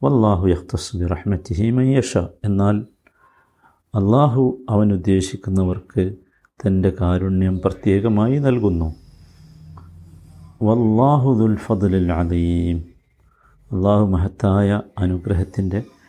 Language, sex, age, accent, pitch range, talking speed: Malayalam, male, 50-69, native, 95-115 Hz, 60 wpm